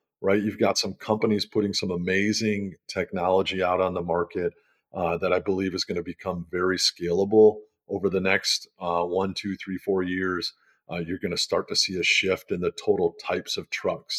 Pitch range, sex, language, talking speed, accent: 90-105 Hz, male, English, 200 wpm, American